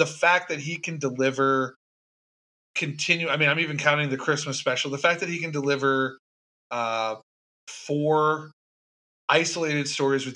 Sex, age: male, 30-49